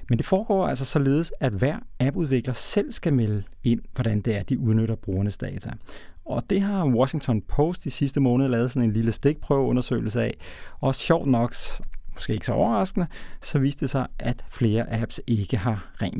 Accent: native